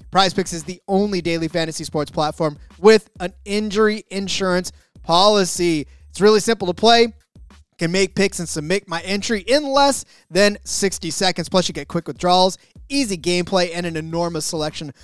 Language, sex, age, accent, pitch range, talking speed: English, male, 30-49, American, 155-195 Hz, 165 wpm